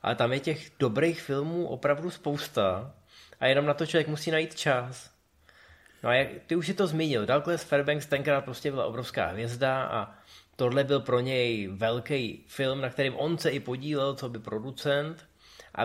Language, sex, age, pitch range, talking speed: Czech, male, 20-39, 110-140 Hz, 180 wpm